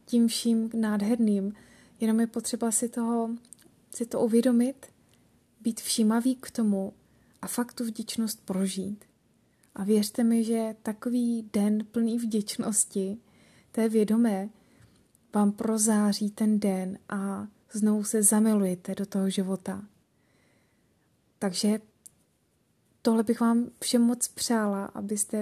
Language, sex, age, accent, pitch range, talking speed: Czech, female, 20-39, native, 210-235 Hz, 115 wpm